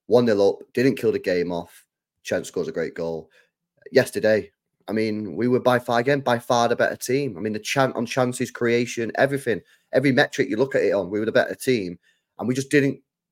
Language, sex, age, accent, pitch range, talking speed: English, male, 30-49, British, 110-145 Hz, 210 wpm